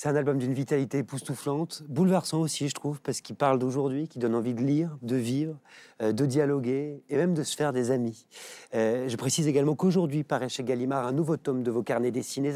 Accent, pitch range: French, 130-170 Hz